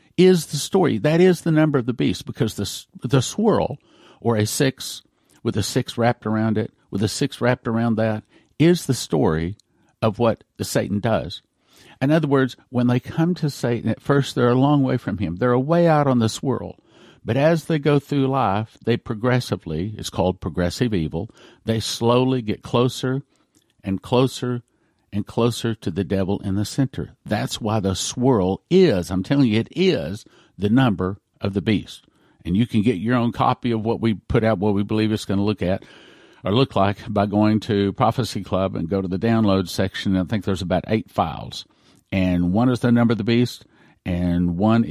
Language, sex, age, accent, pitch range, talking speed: English, male, 50-69, American, 100-130 Hz, 200 wpm